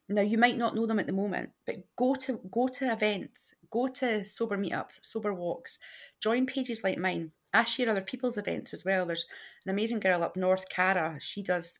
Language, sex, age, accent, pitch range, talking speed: English, female, 30-49, British, 175-230 Hz, 210 wpm